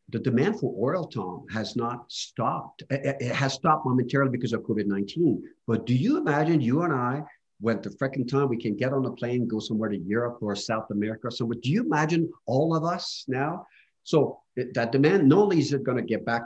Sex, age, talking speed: male, 50-69, 210 wpm